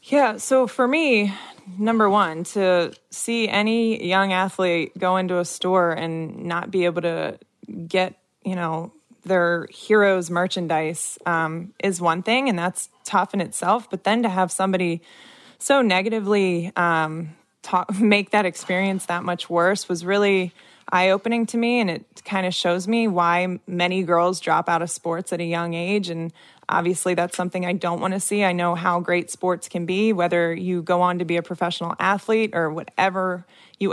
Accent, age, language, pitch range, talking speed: American, 20-39, English, 175-205 Hz, 175 wpm